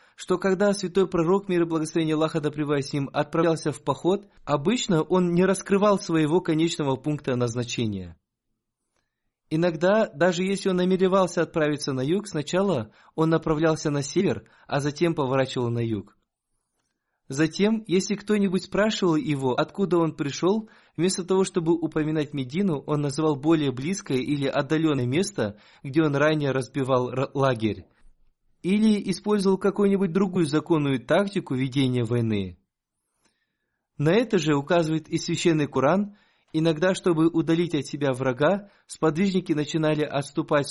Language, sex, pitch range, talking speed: Russian, male, 135-185 Hz, 130 wpm